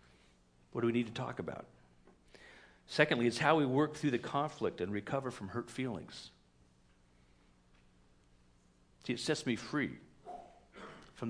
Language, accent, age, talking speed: English, American, 50-69, 140 wpm